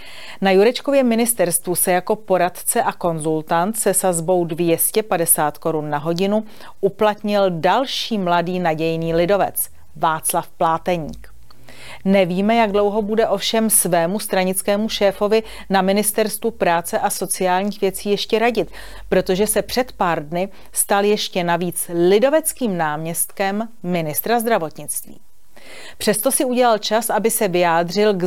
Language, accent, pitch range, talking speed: Czech, native, 175-220 Hz, 120 wpm